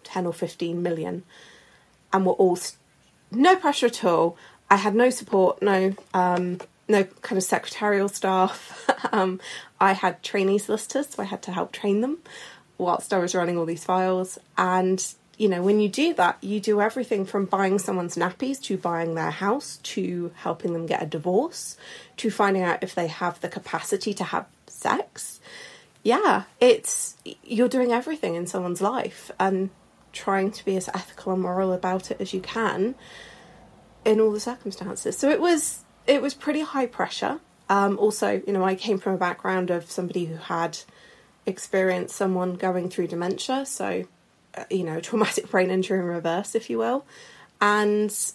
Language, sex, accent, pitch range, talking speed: English, female, British, 180-220 Hz, 175 wpm